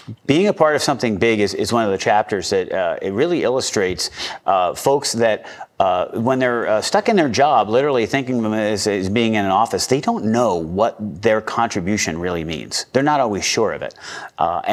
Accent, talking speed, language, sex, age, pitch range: American, 215 wpm, English, male, 40-59, 100-120 Hz